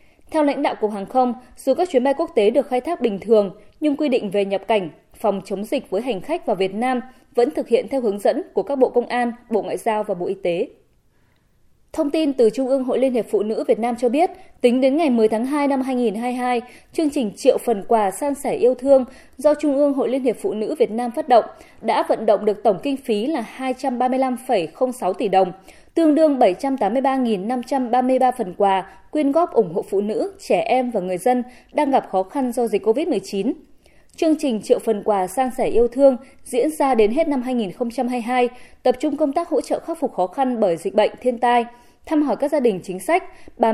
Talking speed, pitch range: 225 wpm, 220-280 Hz